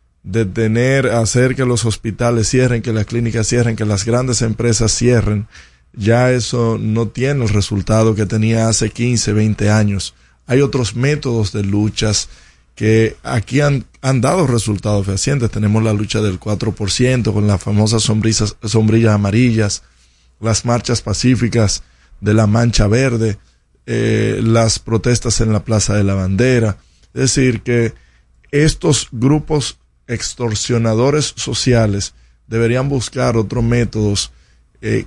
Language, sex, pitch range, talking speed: Spanish, male, 105-120 Hz, 130 wpm